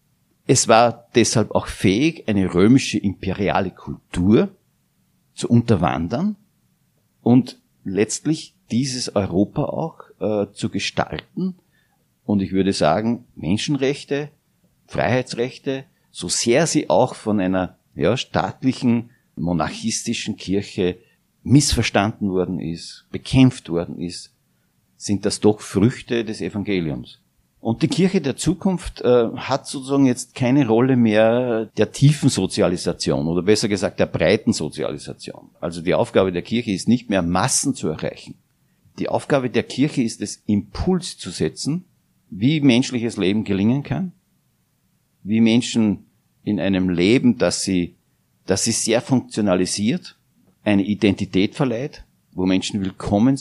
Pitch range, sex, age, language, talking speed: 95-130 Hz, male, 50-69, German, 120 wpm